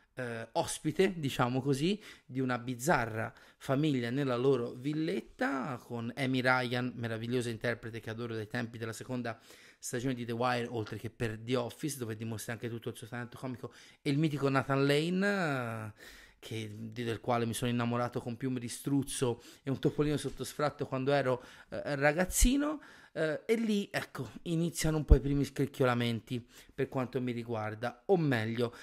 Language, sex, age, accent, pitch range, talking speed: Italian, male, 30-49, native, 125-160 Hz, 160 wpm